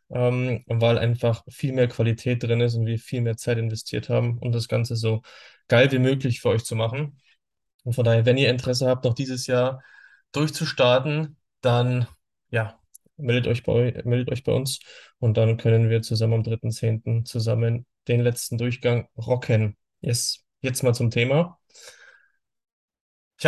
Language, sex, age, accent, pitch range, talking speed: German, male, 10-29, German, 115-130 Hz, 165 wpm